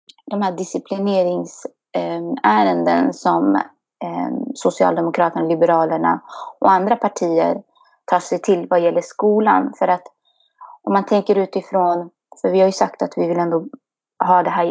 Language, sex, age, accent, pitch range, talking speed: Swedish, female, 20-39, native, 165-205 Hz, 135 wpm